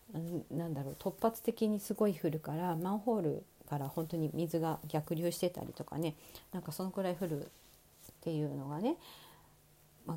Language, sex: Japanese, female